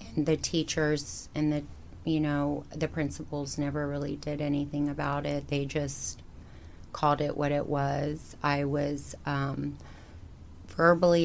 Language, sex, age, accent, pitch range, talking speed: English, female, 30-49, American, 140-155 Hz, 140 wpm